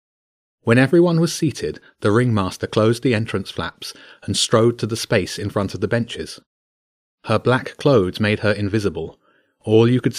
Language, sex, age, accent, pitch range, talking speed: English, male, 30-49, British, 100-120 Hz, 170 wpm